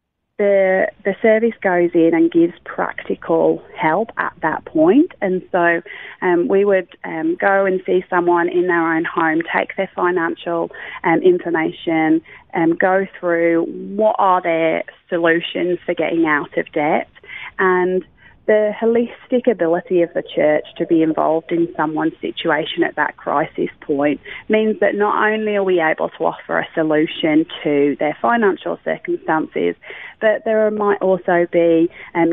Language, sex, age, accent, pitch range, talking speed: English, female, 30-49, British, 165-215 Hz, 150 wpm